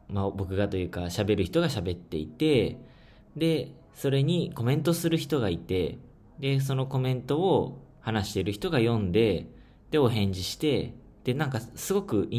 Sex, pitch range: male, 95-135 Hz